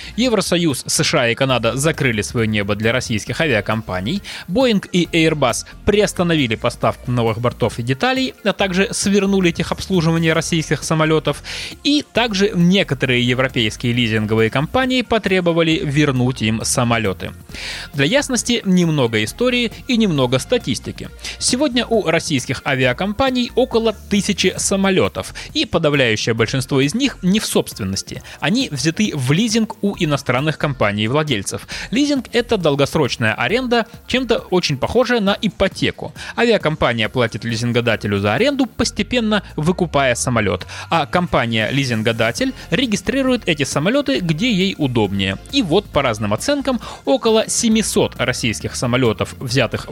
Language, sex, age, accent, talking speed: Russian, male, 20-39, native, 120 wpm